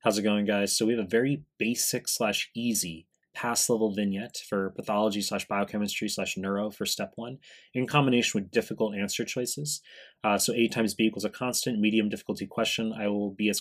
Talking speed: 200 wpm